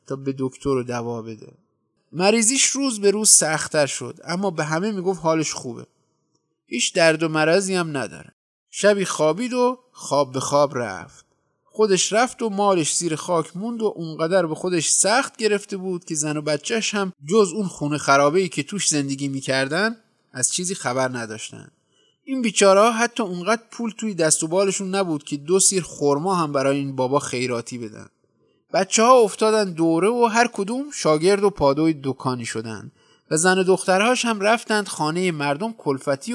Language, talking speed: Persian, 165 wpm